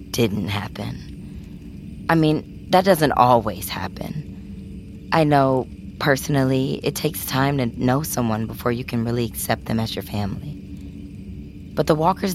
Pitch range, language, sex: 95-135 Hz, English, female